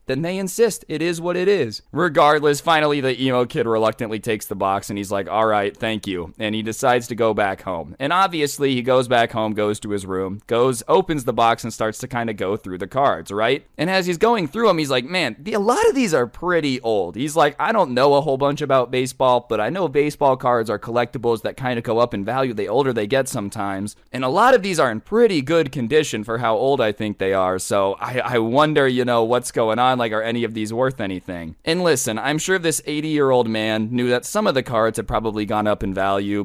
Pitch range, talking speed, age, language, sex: 105-135 Hz, 255 wpm, 20-39, English, male